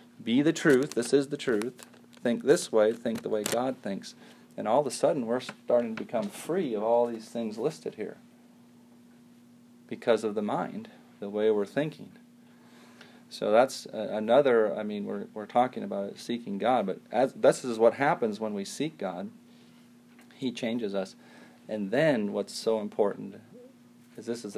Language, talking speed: English, 175 wpm